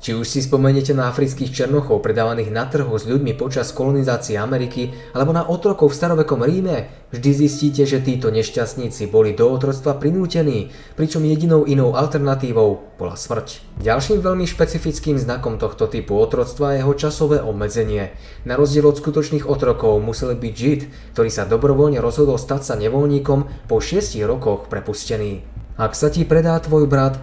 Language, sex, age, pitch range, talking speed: Slovak, male, 20-39, 115-145 Hz, 160 wpm